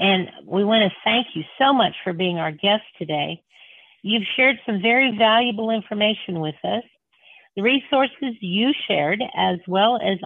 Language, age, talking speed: English, 50-69, 165 wpm